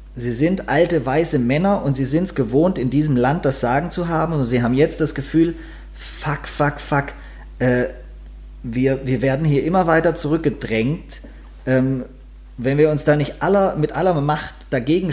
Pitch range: 125-160 Hz